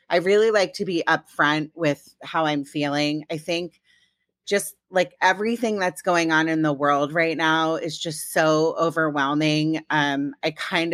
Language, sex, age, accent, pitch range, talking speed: English, female, 30-49, American, 150-175 Hz, 165 wpm